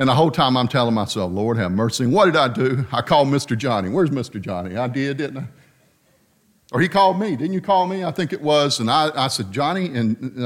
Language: English